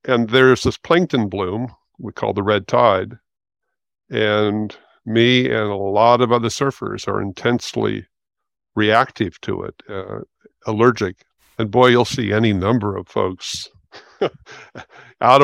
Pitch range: 105-130 Hz